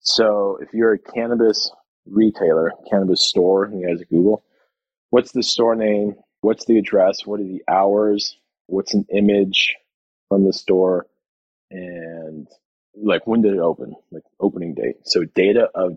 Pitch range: 95-110 Hz